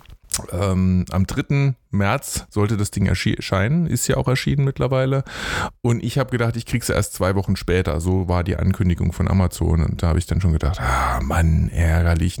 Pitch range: 90-110 Hz